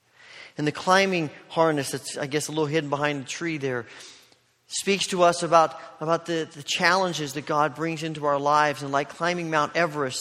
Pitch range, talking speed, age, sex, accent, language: 130-160 Hz, 195 wpm, 40-59, male, American, English